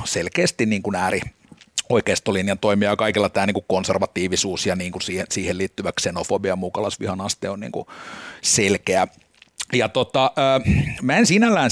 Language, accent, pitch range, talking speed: Finnish, native, 100-115 Hz, 150 wpm